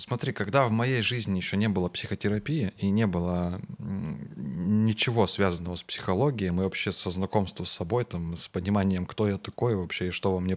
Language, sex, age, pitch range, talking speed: Russian, male, 20-39, 95-110 Hz, 180 wpm